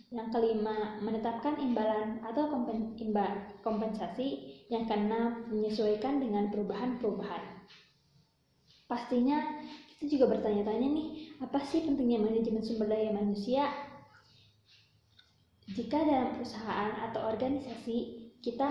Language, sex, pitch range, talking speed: Indonesian, female, 205-250 Hz, 100 wpm